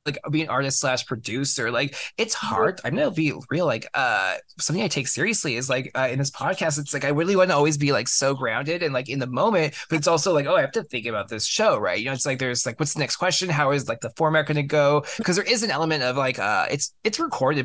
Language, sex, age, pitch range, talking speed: English, male, 20-39, 135-165 Hz, 280 wpm